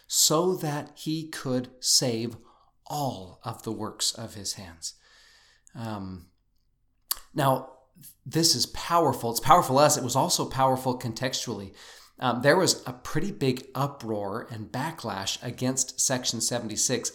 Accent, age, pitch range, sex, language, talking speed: American, 40-59, 115-145 Hz, male, English, 130 wpm